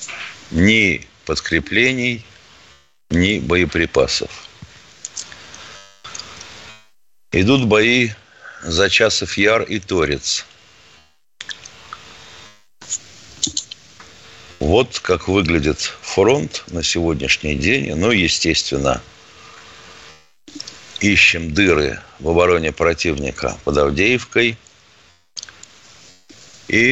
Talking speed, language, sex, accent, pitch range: 60 wpm, Russian, male, native, 80-110 Hz